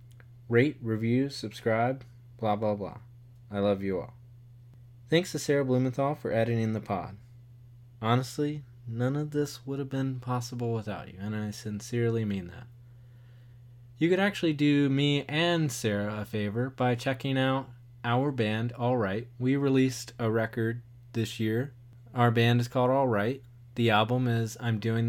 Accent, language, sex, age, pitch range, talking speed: American, English, male, 20-39, 115-125 Hz, 160 wpm